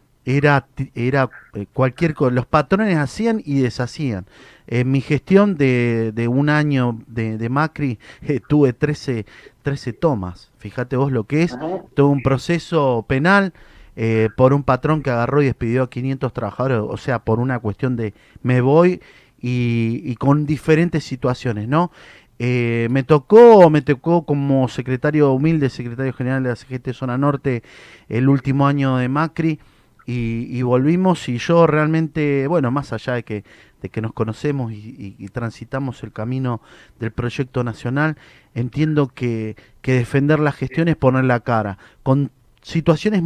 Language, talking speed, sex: Spanish, 160 wpm, male